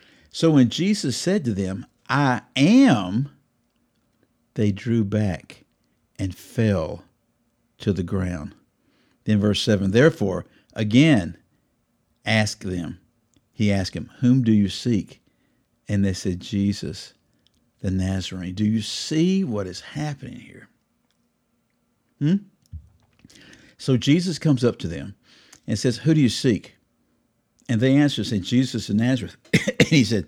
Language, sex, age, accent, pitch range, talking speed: English, male, 50-69, American, 105-140 Hz, 130 wpm